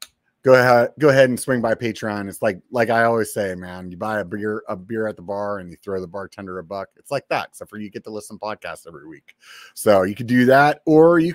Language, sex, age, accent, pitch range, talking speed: English, male, 30-49, American, 105-130 Hz, 265 wpm